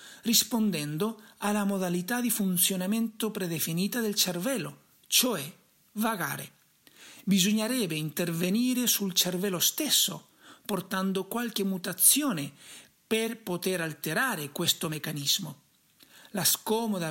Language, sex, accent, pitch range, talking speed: Italian, male, native, 170-225 Hz, 90 wpm